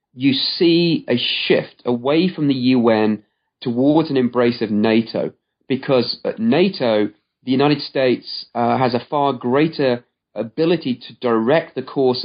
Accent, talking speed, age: British, 140 wpm, 30-49